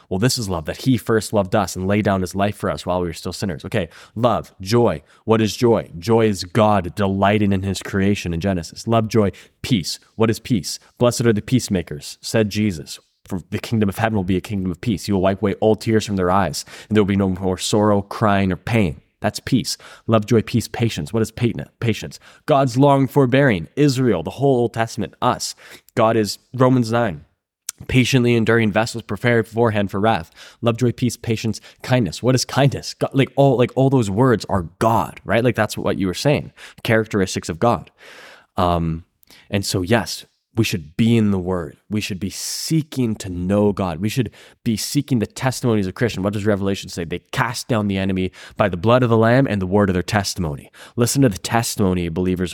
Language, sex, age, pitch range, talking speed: English, male, 10-29, 95-115 Hz, 210 wpm